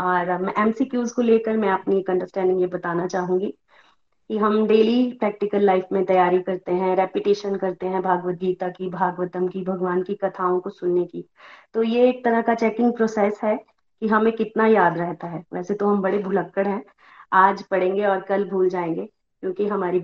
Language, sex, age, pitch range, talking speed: Hindi, female, 20-39, 185-215 Hz, 185 wpm